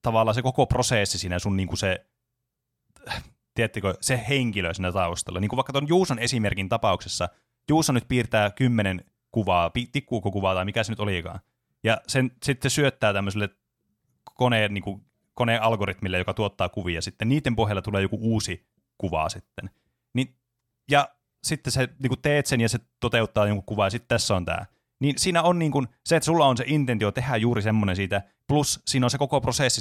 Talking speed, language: 185 wpm, Finnish